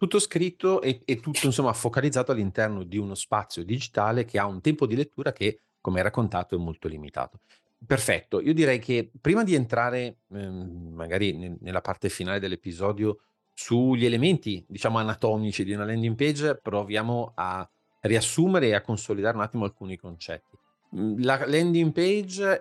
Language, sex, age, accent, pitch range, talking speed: Italian, male, 40-59, native, 90-120 Hz, 160 wpm